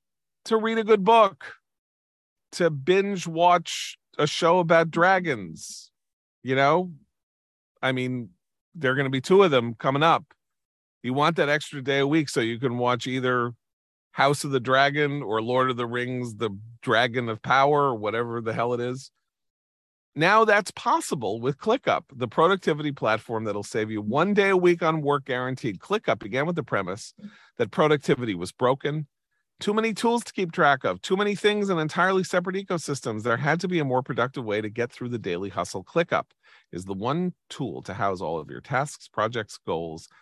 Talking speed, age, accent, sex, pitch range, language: 185 wpm, 40-59, American, male, 110-165 Hz, English